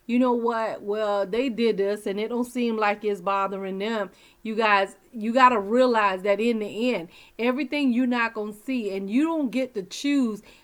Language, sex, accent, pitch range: English, female, American, 205-255 Hz